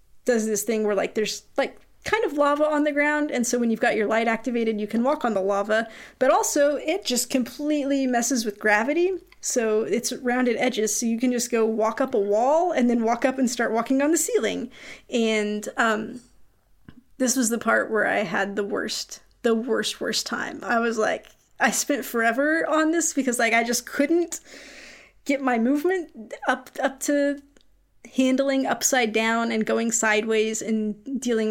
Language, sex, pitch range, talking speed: English, female, 220-280 Hz, 190 wpm